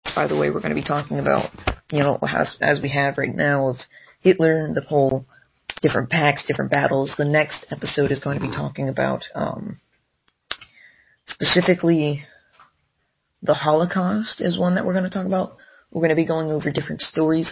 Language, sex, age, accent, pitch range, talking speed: English, female, 30-49, American, 140-170 Hz, 190 wpm